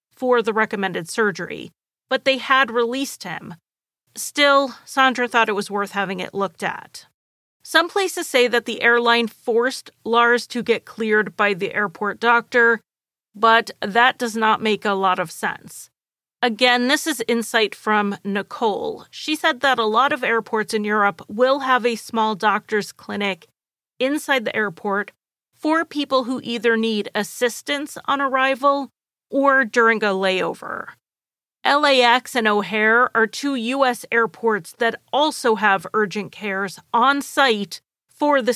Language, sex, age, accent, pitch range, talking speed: English, female, 30-49, American, 210-265 Hz, 150 wpm